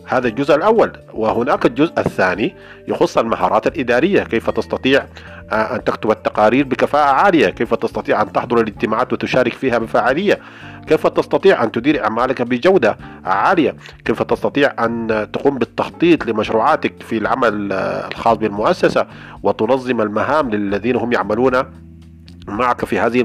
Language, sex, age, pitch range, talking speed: Arabic, male, 40-59, 110-140 Hz, 125 wpm